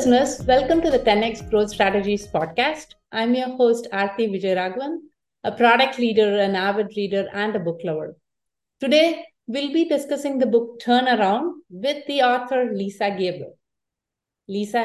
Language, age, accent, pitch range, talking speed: English, 50-69, Indian, 200-255 Hz, 145 wpm